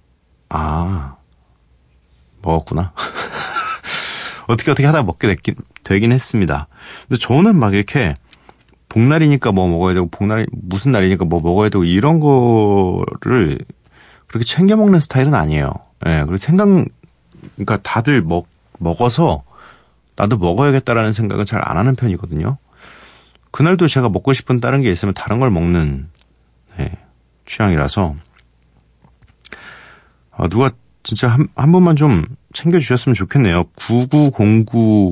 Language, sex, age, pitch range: Korean, male, 40-59, 85-125 Hz